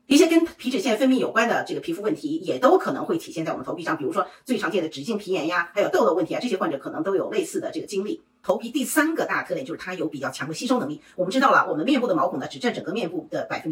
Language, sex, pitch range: Chinese, female, 205-315 Hz